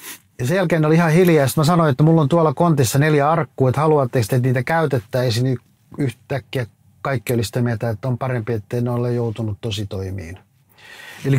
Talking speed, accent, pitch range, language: 170 wpm, native, 110-135 Hz, Finnish